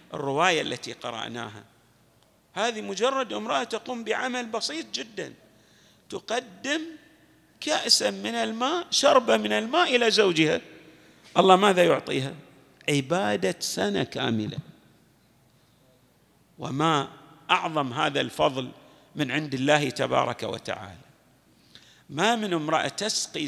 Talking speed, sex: 95 wpm, male